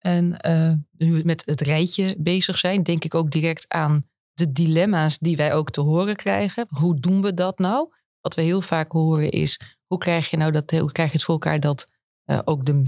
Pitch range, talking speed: 160-195 Hz, 220 wpm